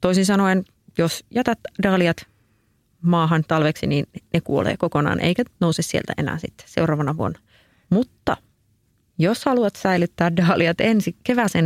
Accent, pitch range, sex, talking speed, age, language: native, 155-185 Hz, female, 130 wpm, 30-49, Finnish